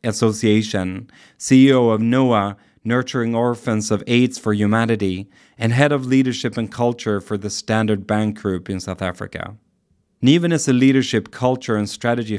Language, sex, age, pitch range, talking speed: English, male, 30-49, 105-125 Hz, 150 wpm